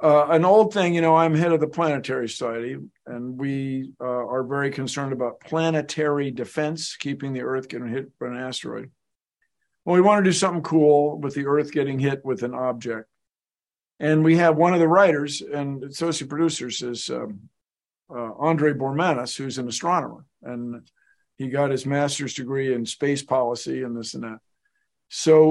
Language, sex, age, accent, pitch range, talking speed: English, male, 50-69, American, 130-160 Hz, 180 wpm